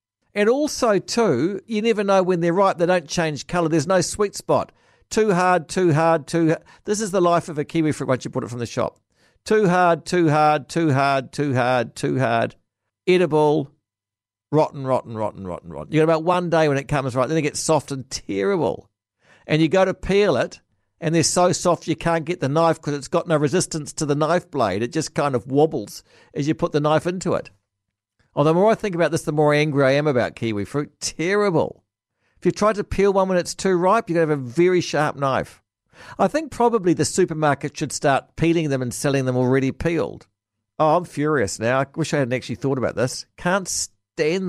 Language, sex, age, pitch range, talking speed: English, male, 60-79, 130-180 Hz, 225 wpm